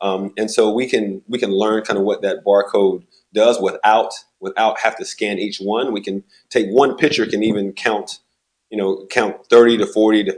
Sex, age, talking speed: male, 30-49, 210 wpm